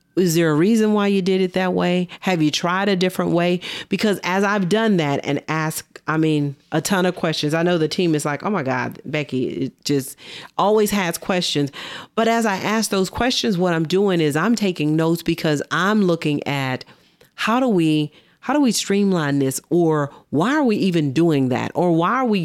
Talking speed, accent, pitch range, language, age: 215 wpm, American, 150-190 Hz, English, 40-59